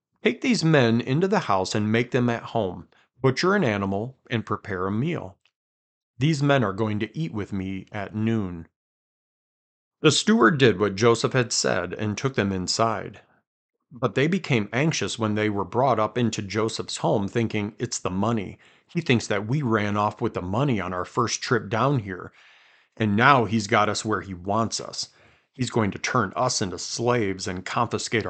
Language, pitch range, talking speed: English, 100-125 Hz, 185 wpm